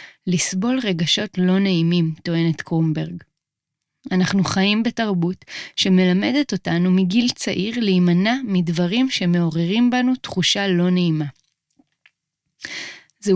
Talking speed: 95 wpm